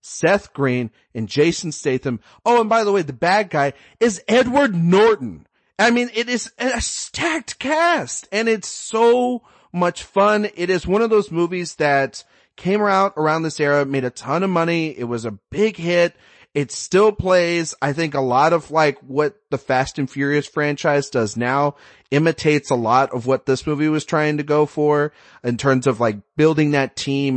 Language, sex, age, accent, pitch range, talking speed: English, male, 30-49, American, 125-165 Hz, 190 wpm